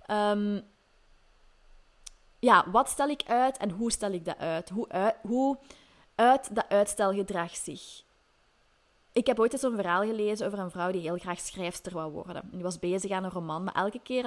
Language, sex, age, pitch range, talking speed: Dutch, female, 20-39, 185-255 Hz, 180 wpm